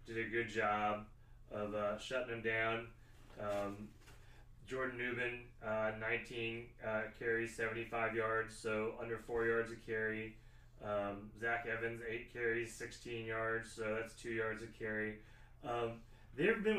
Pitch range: 105-120 Hz